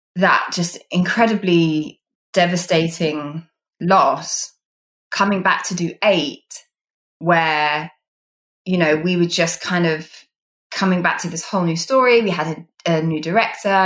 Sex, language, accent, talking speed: female, English, British, 135 wpm